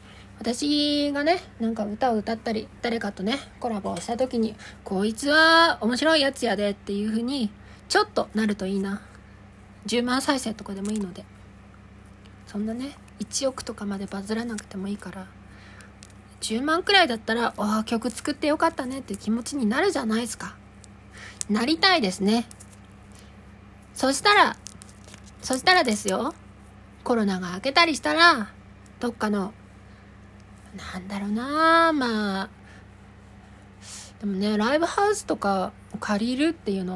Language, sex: Japanese, female